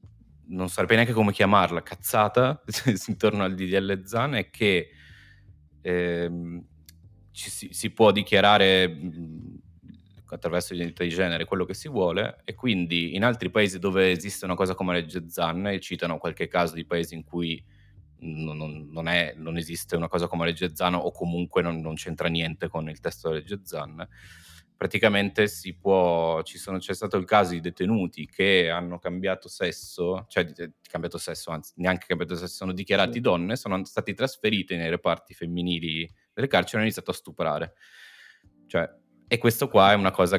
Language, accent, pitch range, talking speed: Italian, native, 85-100 Hz, 175 wpm